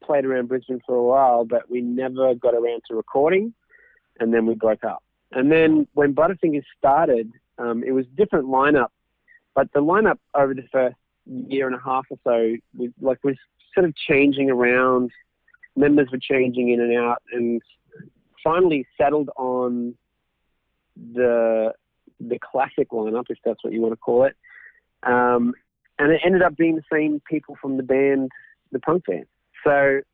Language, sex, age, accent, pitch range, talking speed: English, male, 40-59, Australian, 125-155 Hz, 170 wpm